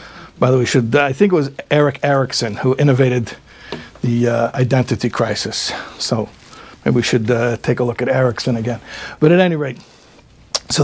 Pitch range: 130-165 Hz